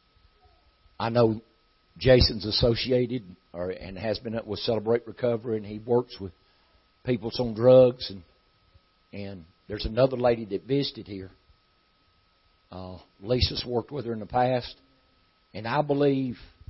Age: 60-79